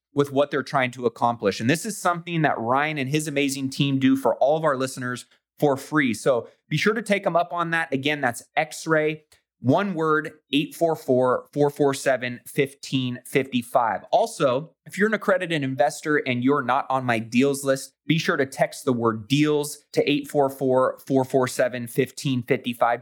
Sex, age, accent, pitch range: male, 20-39, American, 125-150 Hz